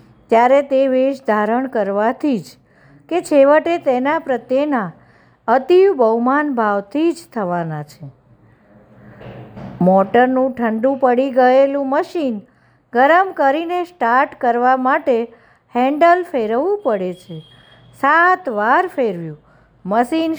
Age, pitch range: 50-69, 230-310 Hz